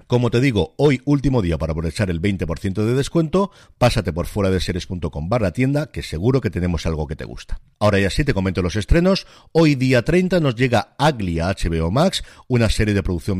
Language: Spanish